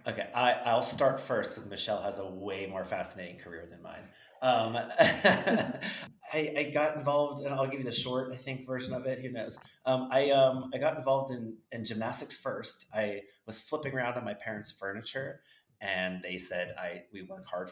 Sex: male